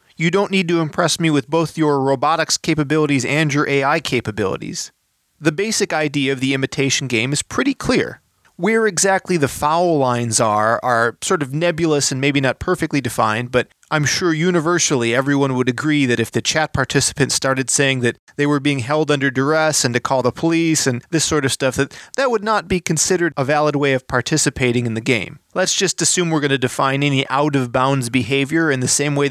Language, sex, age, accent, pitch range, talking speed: English, male, 30-49, American, 130-165 Hz, 205 wpm